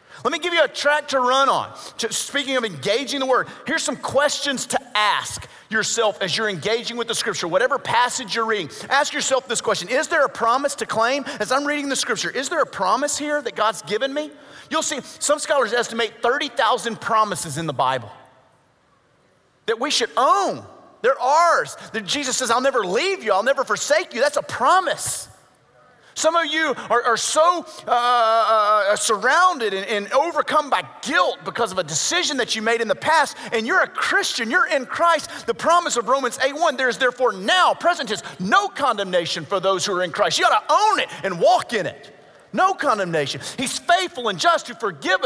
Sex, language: male, English